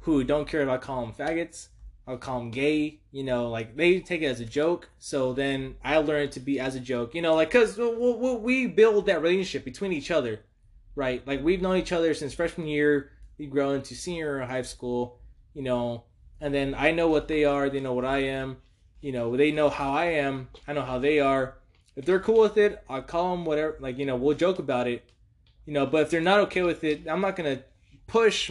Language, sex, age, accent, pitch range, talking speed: English, male, 20-39, American, 130-175 Hz, 240 wpm